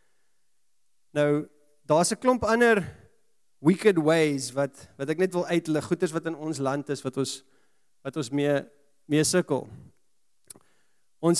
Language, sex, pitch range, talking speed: English, male, 145-195 Hz, 155 wpm